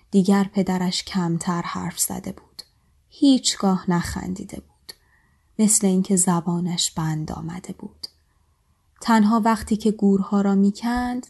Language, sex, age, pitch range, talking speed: Persian, female, 10-29, 170-225 Hz, 110 wpm